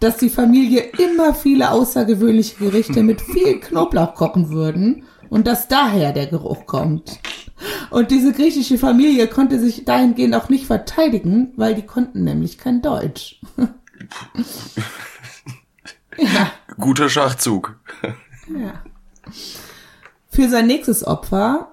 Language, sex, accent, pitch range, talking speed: German, female, German, 170-245 Hz, 110 wpm